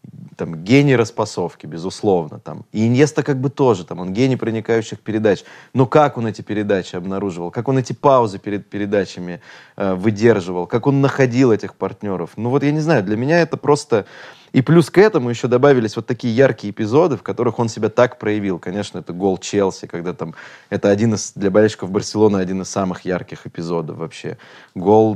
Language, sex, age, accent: Russian, male, 20-39, native